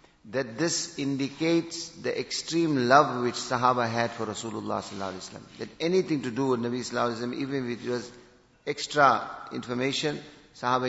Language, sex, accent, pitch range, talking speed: English, male, Indian, 120-145 Hz, 145 wpm